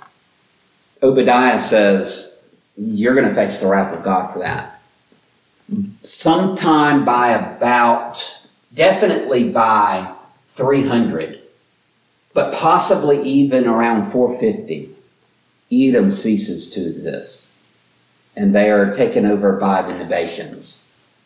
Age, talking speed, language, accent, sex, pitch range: 50-69, 100 wpm, English, American, male, 110-180 Hz